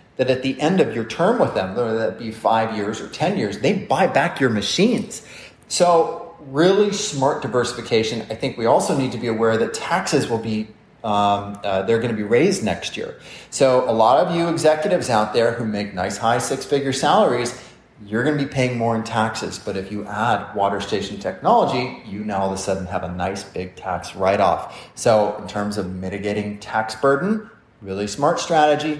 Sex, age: male, 30-49